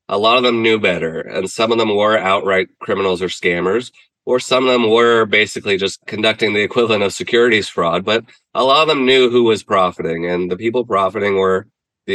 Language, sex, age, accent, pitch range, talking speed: English, male, 20-39, American, 95-120 Hz, 210 wpm